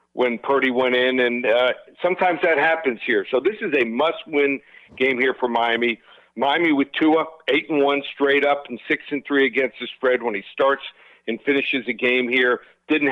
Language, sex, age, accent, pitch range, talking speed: English, male, 50-69, American, 125-150 Hz, 195 wpm